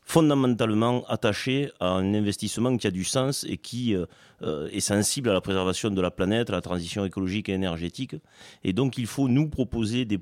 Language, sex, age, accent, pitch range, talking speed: French, male, 30-49, French, 95-125 Hz, 195 wpm